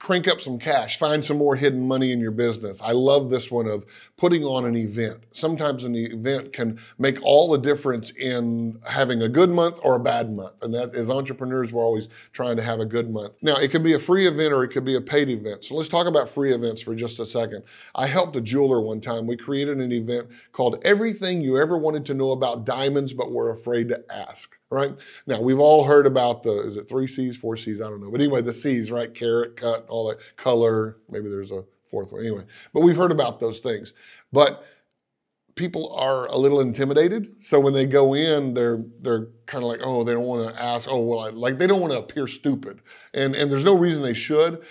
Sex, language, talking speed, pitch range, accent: male, English, 235 wpm, 115-140 Hz, American